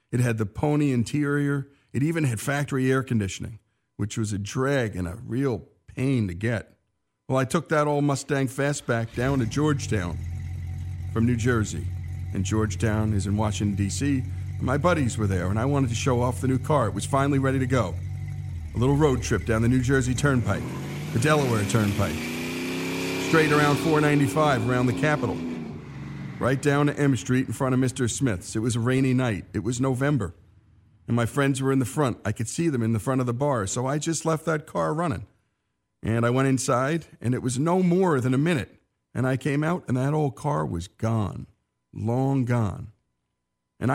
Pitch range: 105-140 Hz